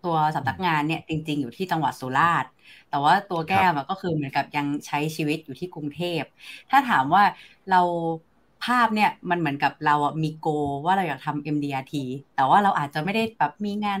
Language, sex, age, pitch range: Thai, female, 30-49, 150-190 Hz